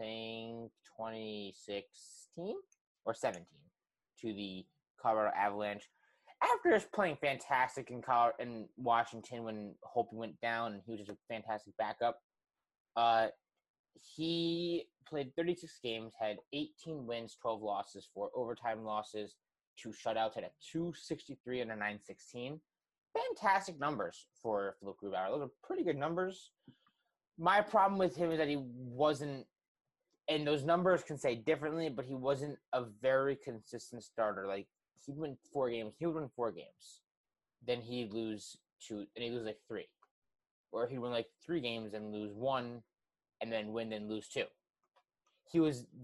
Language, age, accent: English, 20-39, American